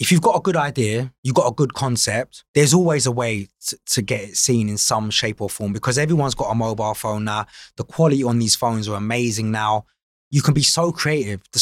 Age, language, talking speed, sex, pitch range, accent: 20-39, English, 240 wpm, male, 110-150 Hz, British